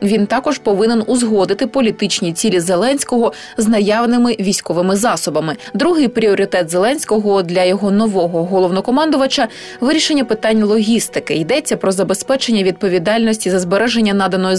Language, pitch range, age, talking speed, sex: Ukrainian, 185-240 Hz, 20-39, 120 wpm, female